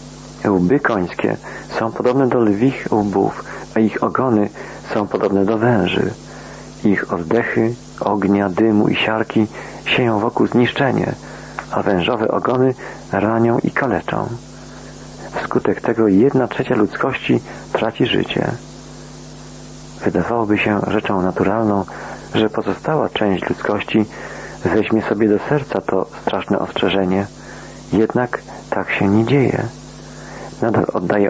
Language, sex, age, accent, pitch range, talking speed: Polish, male, 50-69, native, 100-120 Hz, 110 wpm